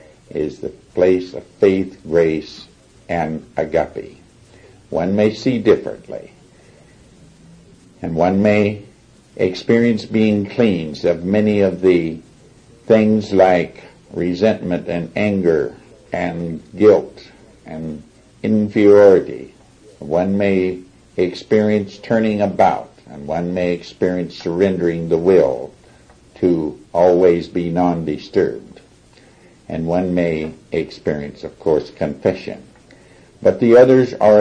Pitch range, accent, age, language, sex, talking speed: 90-105 Hz, American, 60-79, English, male, 100 wpm